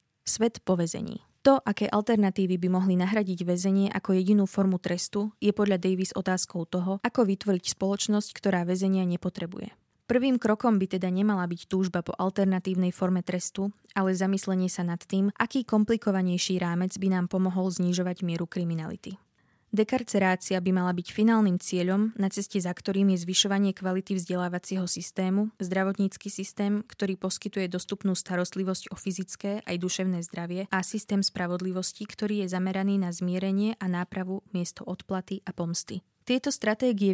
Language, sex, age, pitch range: Slovak, female, 20-39, 185-205 Hz